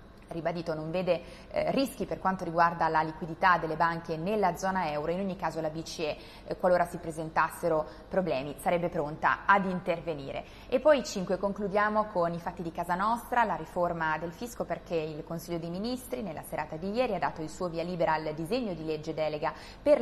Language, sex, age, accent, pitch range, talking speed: Italian, female, 20-39, native, 160-190 Hz, 185 wpm